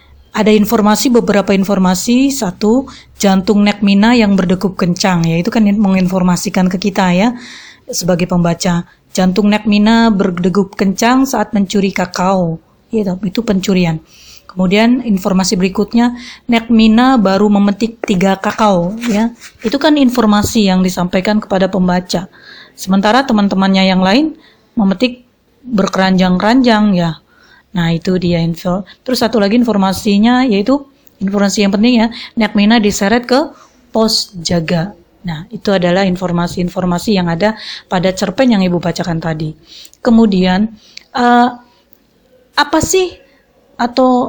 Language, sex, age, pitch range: Indonesian, female, 30-49, 190-240 Hz